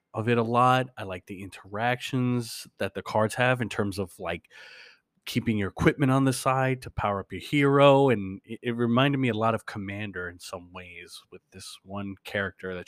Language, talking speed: English, 205 wpm